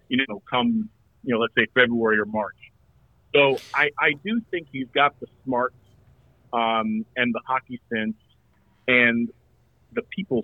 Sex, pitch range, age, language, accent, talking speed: male, 110-135 Hz, 40-59, English, American, 155 wpm